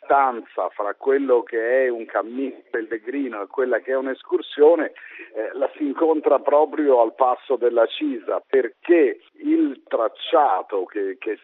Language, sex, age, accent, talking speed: Italian, male, 50-69, native, 125 wpm